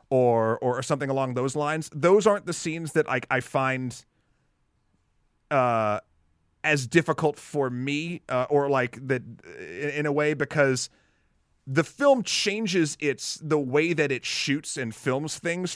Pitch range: 125-155 Hz